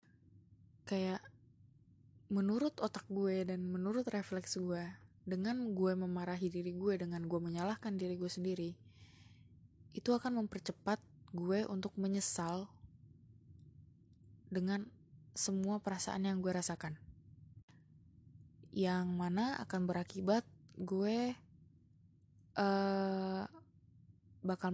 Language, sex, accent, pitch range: Indonesian, female, native, 165-195 Hz